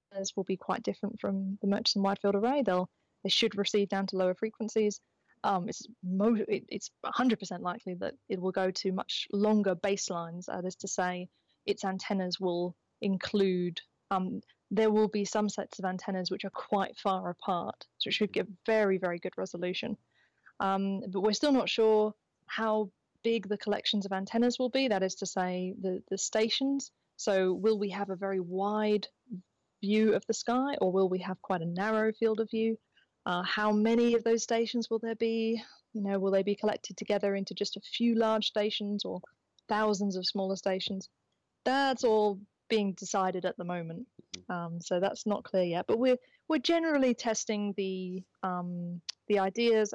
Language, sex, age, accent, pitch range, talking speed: English, female, 20-39, British, 190-220 Hz, 185 wpm